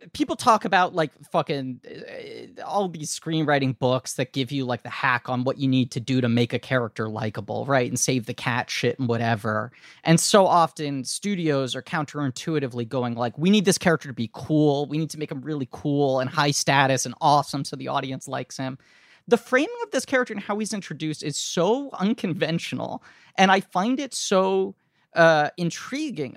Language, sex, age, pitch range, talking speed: English, male, 30-49, 135-195 Hz, 195 wpm